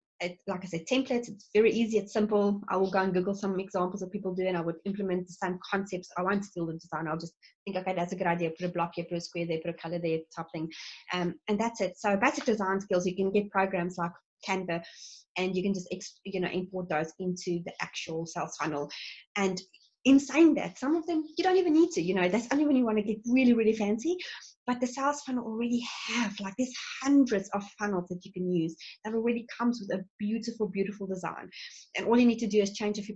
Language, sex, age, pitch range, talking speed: English, female, 20-39, 180-235 Hz, 250 wpm